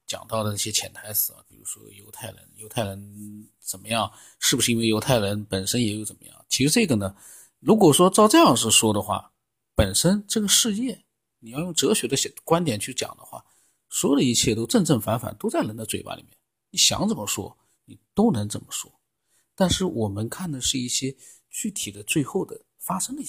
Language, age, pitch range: Chinese, 50-69, 110-170 Hz